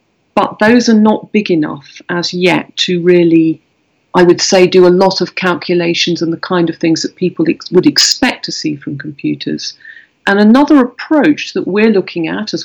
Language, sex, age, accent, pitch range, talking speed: English, female, 40-59, British, 165-200 Hz, 185 wpm